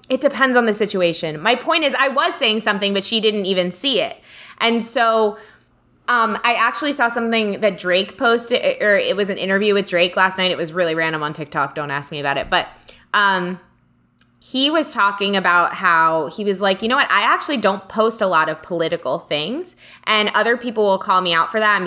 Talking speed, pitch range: 220 wpm, 180-225 Hz